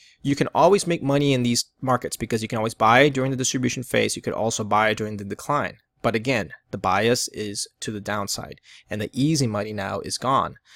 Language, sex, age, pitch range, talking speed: English, male, 20-39, 110-140 Hz, 220 wpm